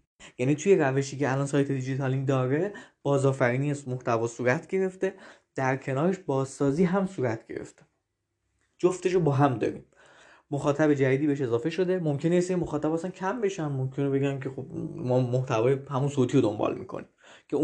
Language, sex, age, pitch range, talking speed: Persian, male, 20-39, 135-165 Hz, 165 wpm